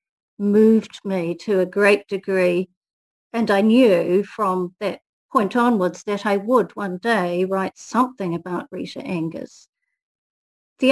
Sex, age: female, 50-69